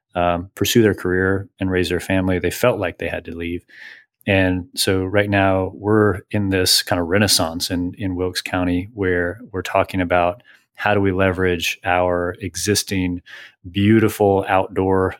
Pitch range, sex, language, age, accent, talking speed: 90-100 Hz, male, English, 30-49, American, 160 wpm